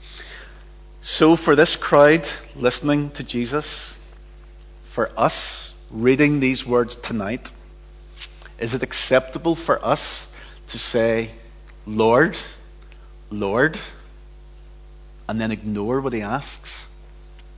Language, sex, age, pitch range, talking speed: English, male, 50-69, 85-130 Hz, 95 wpm